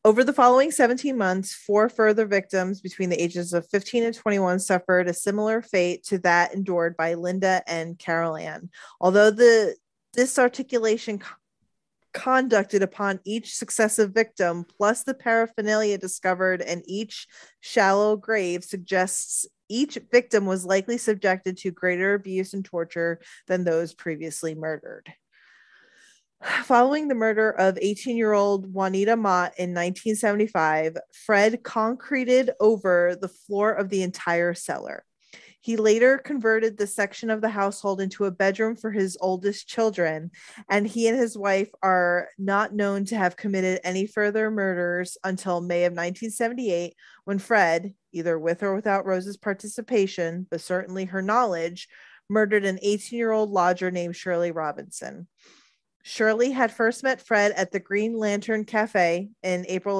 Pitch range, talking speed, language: 180-220 Hz, 140 wpm, English